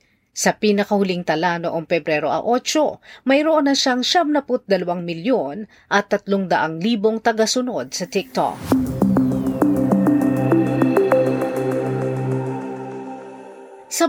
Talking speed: 90 wpm